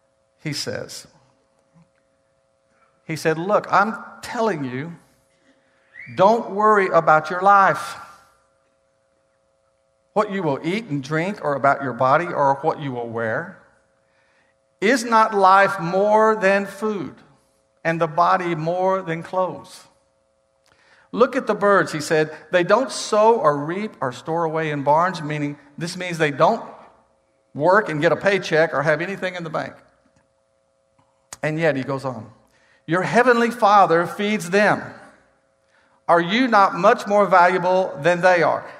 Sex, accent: male, American